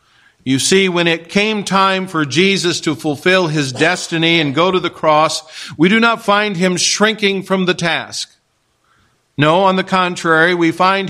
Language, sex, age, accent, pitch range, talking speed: English, male, 50-69, American, 155-185 Hz, 175 wpm